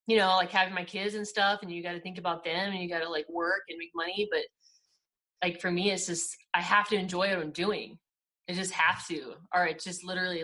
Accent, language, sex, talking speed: American, English, female, 260 wpm